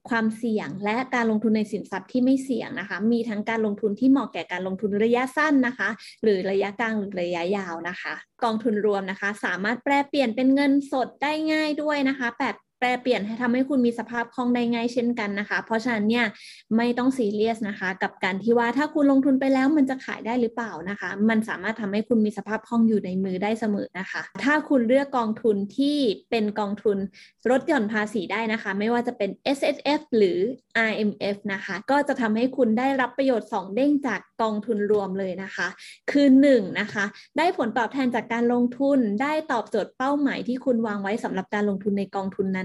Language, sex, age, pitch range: English, female, 20-39, 205-255 Hz